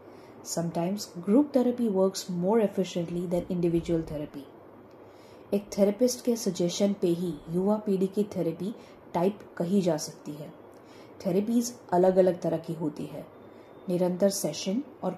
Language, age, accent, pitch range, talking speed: Hindi, 20-39, native, 175-205 Hz, 135 wpm